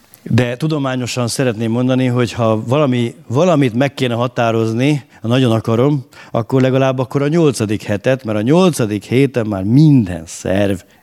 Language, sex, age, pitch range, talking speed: Hungarian, male, 50-69, 100-125 Hz, 145 wpm